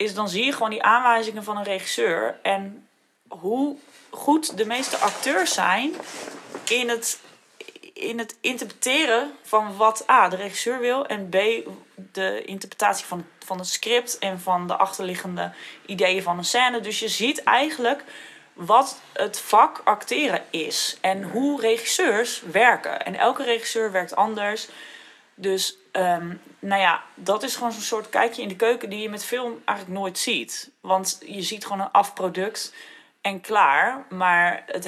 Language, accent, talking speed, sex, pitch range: Dutch, Dutch, 160 wpm, female, 185-230 Hz